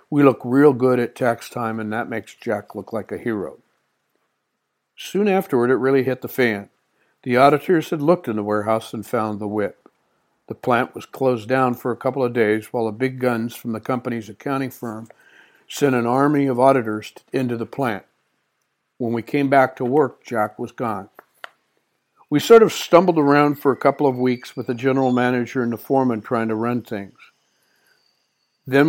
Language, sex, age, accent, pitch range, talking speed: English, male, 60-79, American, 115-135 Hz, 190 wpm